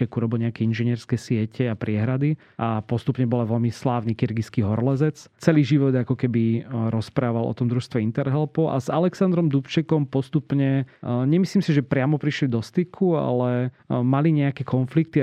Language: Slovak